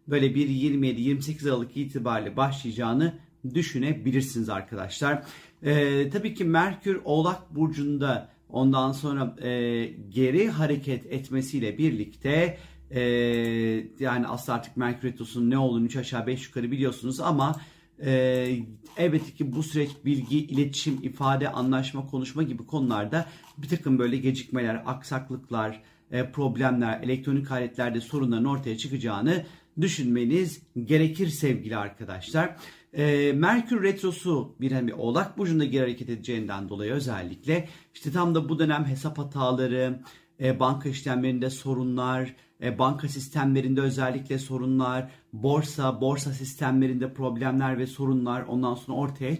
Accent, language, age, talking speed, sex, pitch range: native, Turkish, 40-59, 120 wpm, male, 125-150 Hz